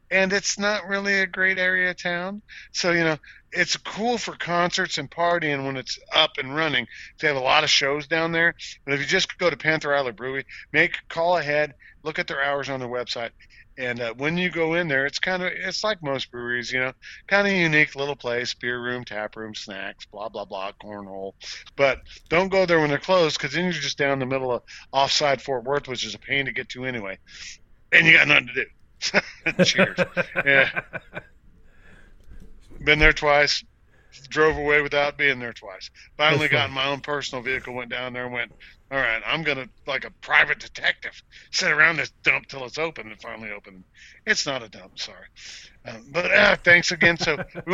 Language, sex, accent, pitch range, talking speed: English, male, American, 125-170 Hz, 205 wpm